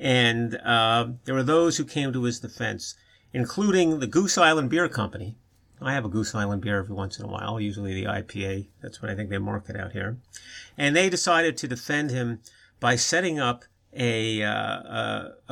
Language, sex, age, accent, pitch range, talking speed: English, male, 50-69, American, 110-140 Hz, 195 wpm